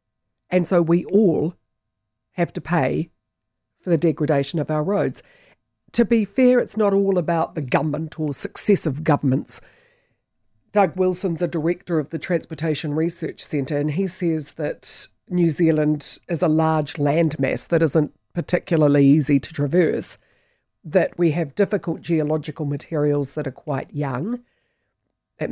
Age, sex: 50-69, female